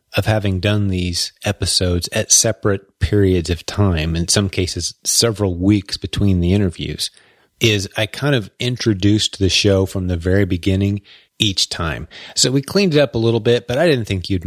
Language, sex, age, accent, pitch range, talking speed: English, male, 30-49, American, 95-115 Hz, 185 wpm